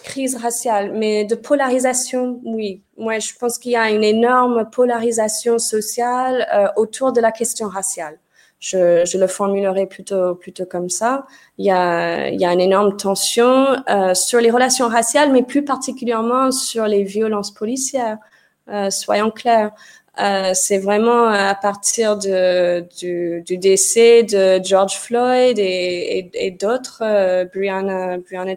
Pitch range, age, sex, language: 200-250 Hz, 20-39, female, French